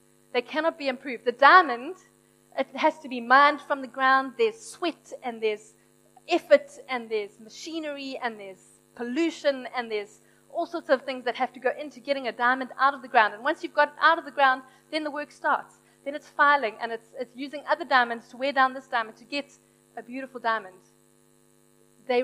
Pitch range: 230-290 Hz